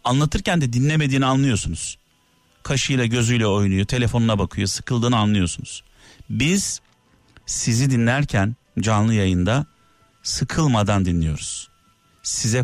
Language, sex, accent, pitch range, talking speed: Turkish, male, native, 95-125 Hz, 90 wpm